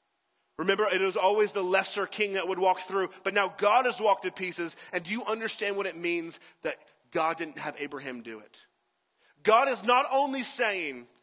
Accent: American